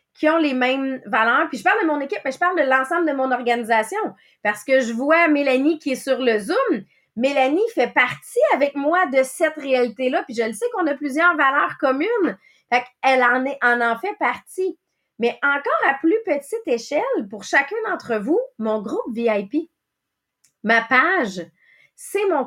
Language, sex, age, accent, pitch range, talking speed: English, female, 30-49, Canadian, 240-335 Hz, 190 wpm